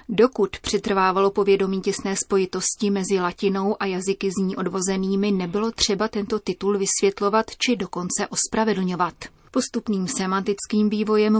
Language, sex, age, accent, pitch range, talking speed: Czech, female, 30-49, native, 185-215 Hz, 120 wpm